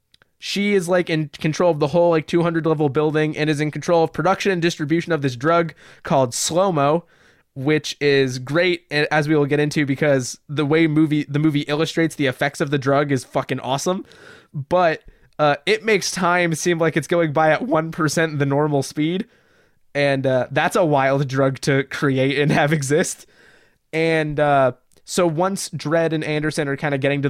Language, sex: English, male